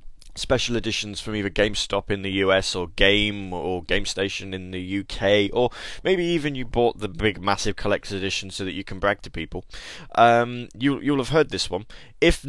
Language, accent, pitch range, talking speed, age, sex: English, British, 95-120 Hz, 185 wpm, 20-39, male